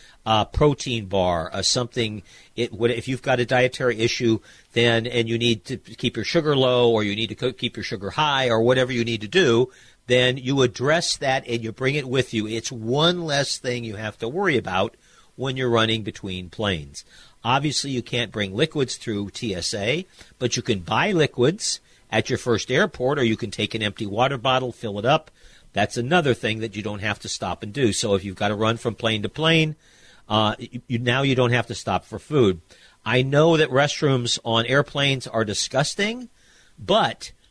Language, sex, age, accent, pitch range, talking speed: English, male, 50-69, American, 110-130 Hz, 205 wpm